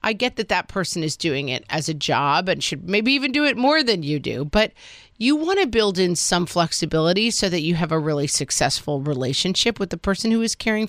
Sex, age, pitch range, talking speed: female, 40-59, 155-220 Hz, 235 wpm